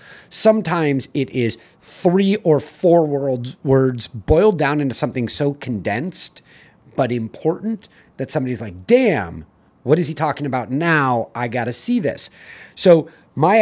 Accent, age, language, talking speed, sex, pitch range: American, 30-49, English, 145 wpm, male, 115-155 Hz